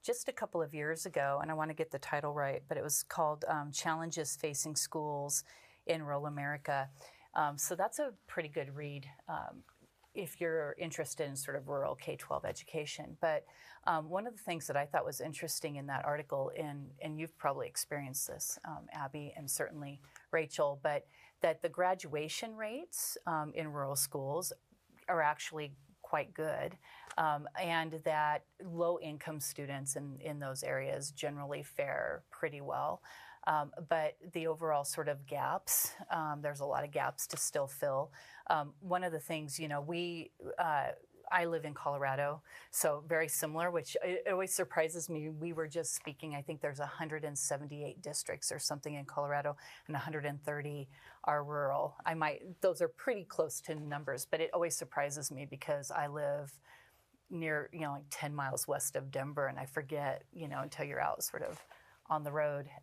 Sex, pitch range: female, 145-165 Hz